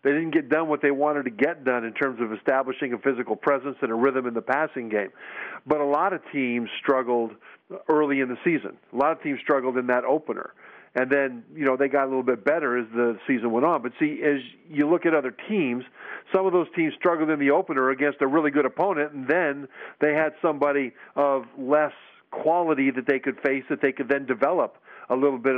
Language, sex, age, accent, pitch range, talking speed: English, male, 50-69, American, 130-160 Hz, 230 wpm